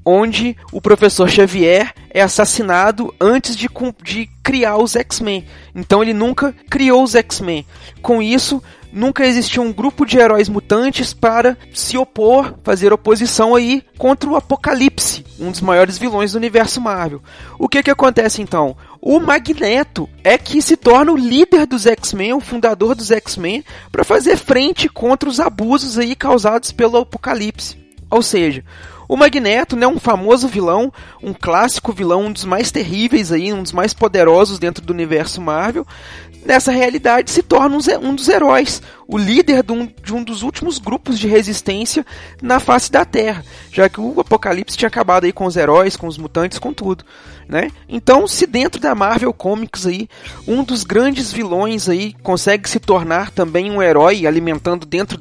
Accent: Brazilian